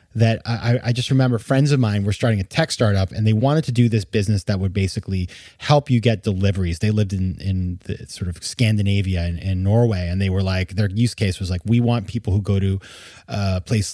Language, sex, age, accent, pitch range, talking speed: English, male, 30-49, American, 95-120 Hz, 230 wpm